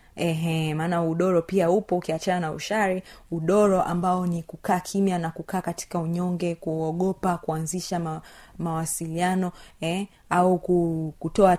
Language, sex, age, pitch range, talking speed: Swahili, female, 30-49, 170-210 Hz, 125 wpm